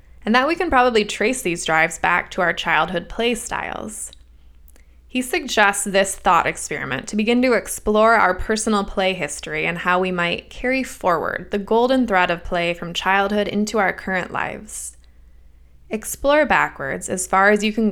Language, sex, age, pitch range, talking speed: English, female, 20-39, 170-225 Hz, 170 wpm